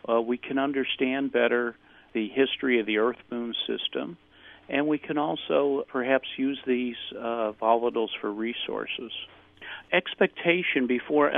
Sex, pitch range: male, 115-135 Hz